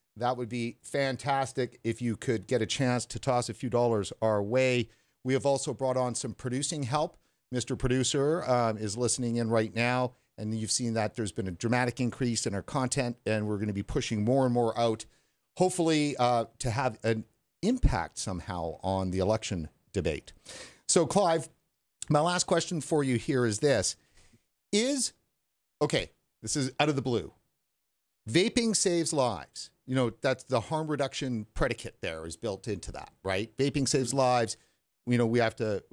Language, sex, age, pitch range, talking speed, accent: English, male, 50-69, 110-135 Hz, 180 wpm, American